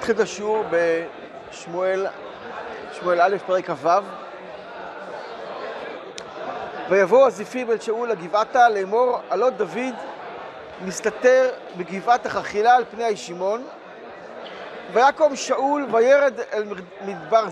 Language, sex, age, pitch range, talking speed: Hebrew, male, 40-59, 215-275 Hz, 90 wpm